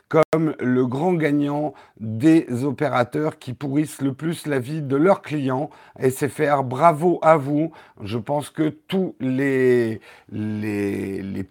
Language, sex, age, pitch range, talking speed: French, male, 50-69, 130-175 Hz, 135 wpm